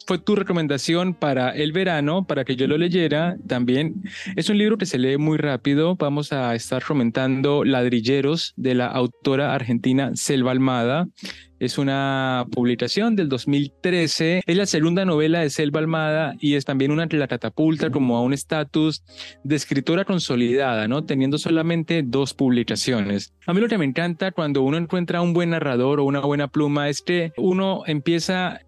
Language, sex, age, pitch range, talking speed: Spanish, male, 20-39, 135-180 Hz, 170 wpm